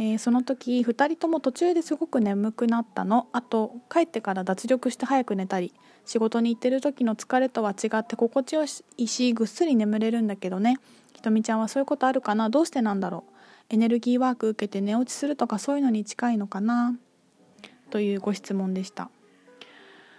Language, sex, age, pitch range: Japanese, female, 20-39, 205-255 Hz